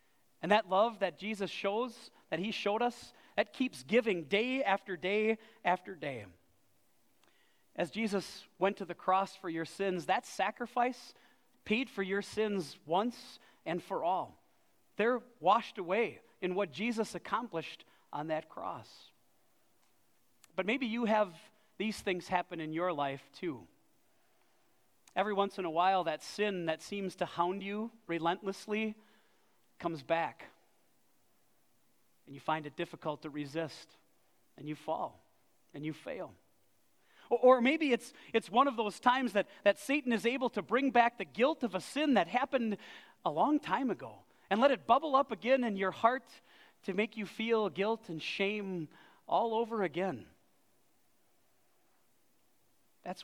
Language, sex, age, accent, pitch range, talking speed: English, male, 40-59, American, 170-230 Hz, 150 wpm